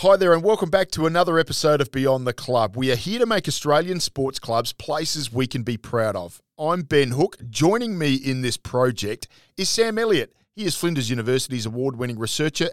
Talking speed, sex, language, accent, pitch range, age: 205 wpm, male, English, Australian, 115-145 Hz, 40-59